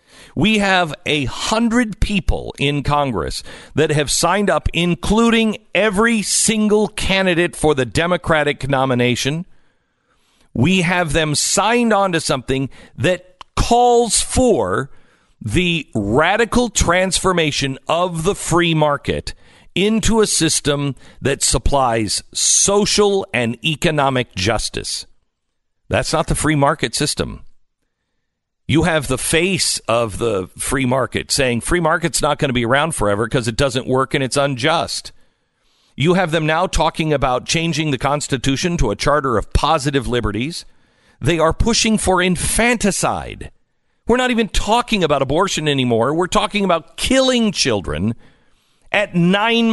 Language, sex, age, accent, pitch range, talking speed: English, male, 50-69, American, 130-190 Hz, 130 wpm